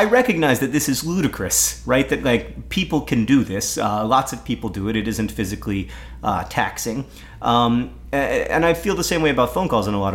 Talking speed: 220 wpm